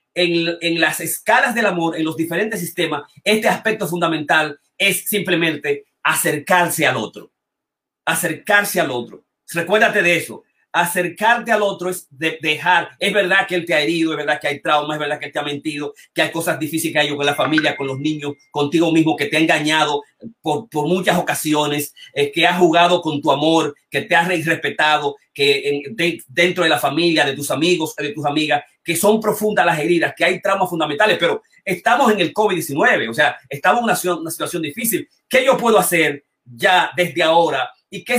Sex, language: male, Spanish